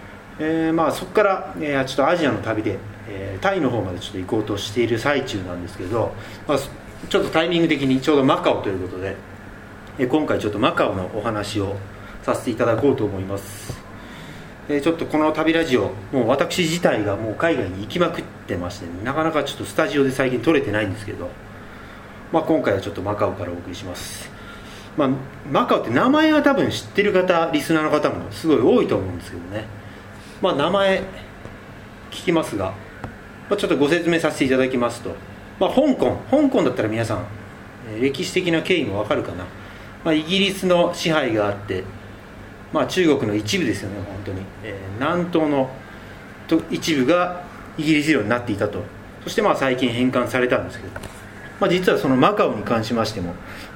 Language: Japanese